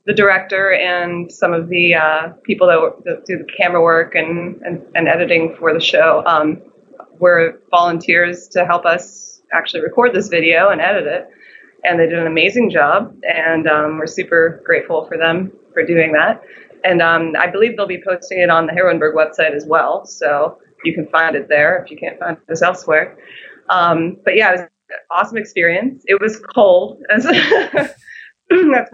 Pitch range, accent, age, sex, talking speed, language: 170-205 Hz, American, 20-39, female, 185 wpm, English